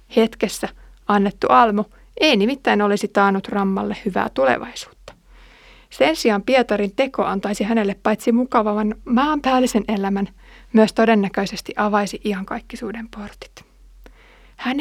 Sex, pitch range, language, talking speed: female, 195-230 Hz, Finnish, 110 wpm